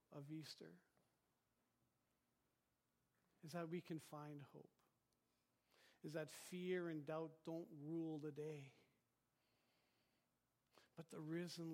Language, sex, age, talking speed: English, male, 50-69, 100 wpm